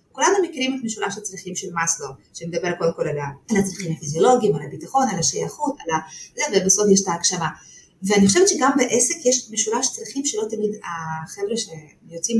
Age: 30-49